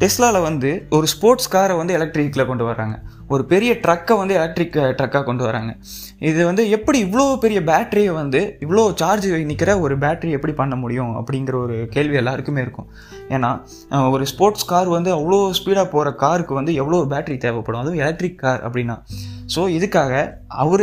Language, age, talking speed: Tamil, 20-39, 165 wpm